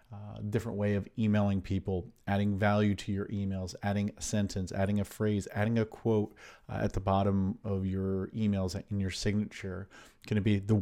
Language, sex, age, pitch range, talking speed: English, male, 40-59, 95-105 Hz, 190 wpm